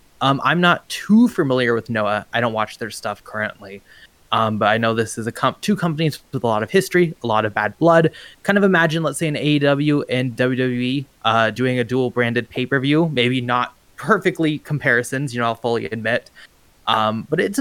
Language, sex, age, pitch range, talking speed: English, male, 20-39, 115-145 Hz, 210 wpm